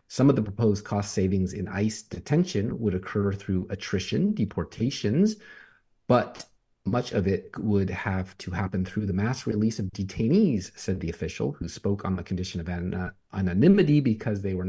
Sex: male